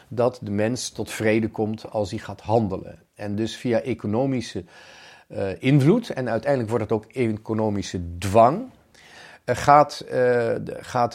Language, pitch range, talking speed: Dutch, 100-125 Hz, 140 wpm